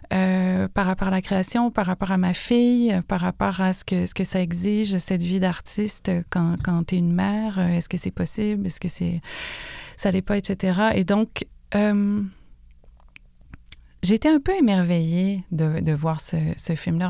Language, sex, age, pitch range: French, female, 30-49, 170-195 Hz